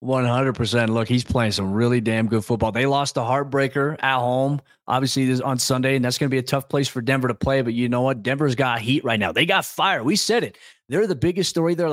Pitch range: 135-175 Hz